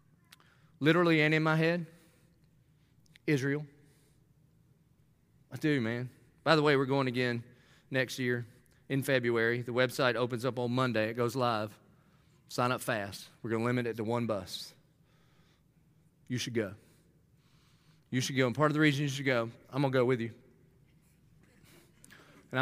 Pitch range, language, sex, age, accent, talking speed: 130-160 Hz, English, male, 40-59, American, 160 wpm